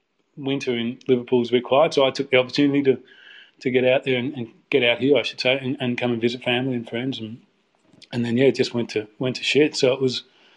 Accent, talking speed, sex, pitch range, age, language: Australian, 265 wpm, male, 115-130 Hz, 30-49, English